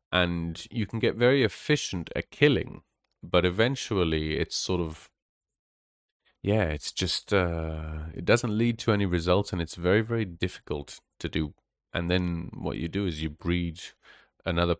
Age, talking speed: 30-49, 160 wpm